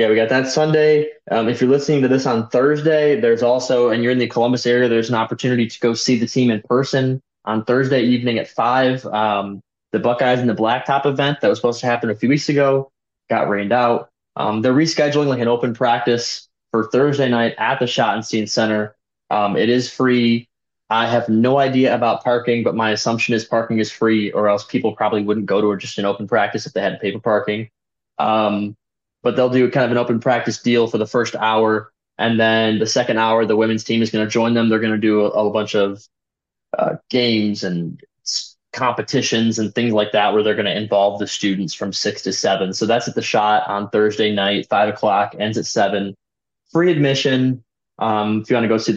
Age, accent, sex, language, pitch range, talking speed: 20-39, American, male, English, 105-125 Hz, 220 wpm